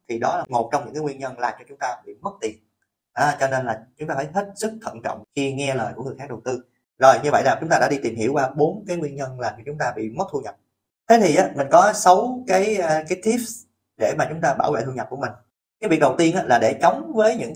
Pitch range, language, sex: 120-170 Hz, Vietnamese, male